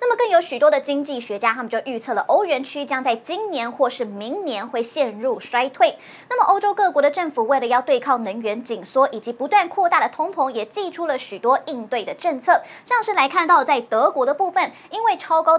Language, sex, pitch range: Chinese, male, 245-350 Hz